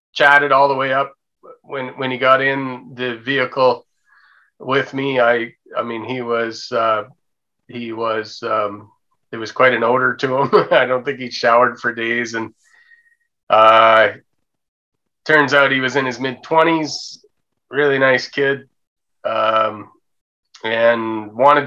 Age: 30-49